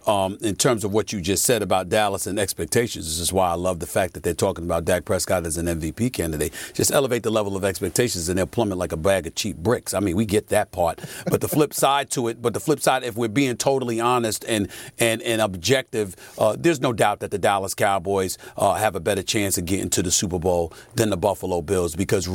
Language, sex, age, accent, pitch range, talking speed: English, male, 40-59, American, 100-115 Hz, 250 wpm